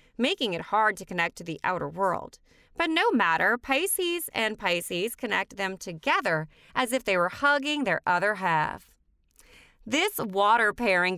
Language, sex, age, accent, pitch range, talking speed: English, female, 30-49, American, 185-255 Hz, 155 wpm